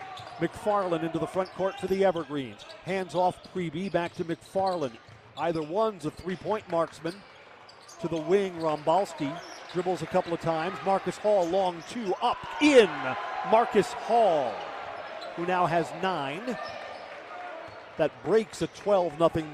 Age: 40-59